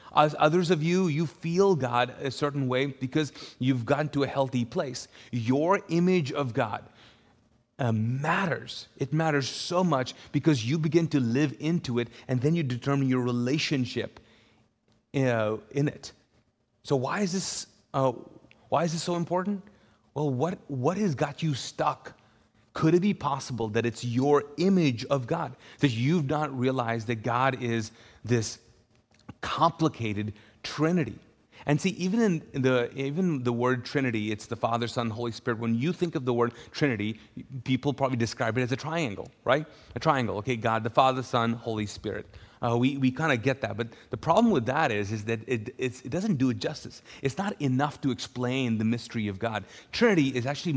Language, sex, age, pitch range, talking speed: English, male, 30-49, 120-150 Hz, 180 wpm